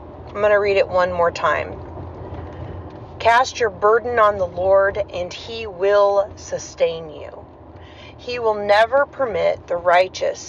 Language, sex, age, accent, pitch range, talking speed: English, female, 30-49, American, 190-240 Hz, 145 wpm